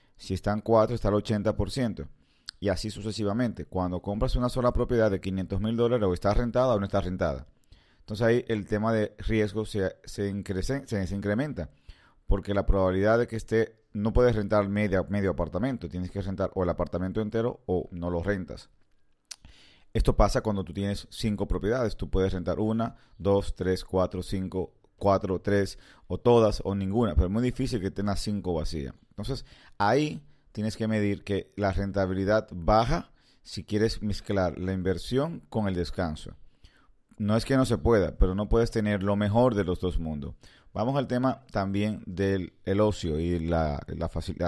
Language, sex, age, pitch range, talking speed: Spanish, male, 30-49, 90-110 Hz, 175 wpm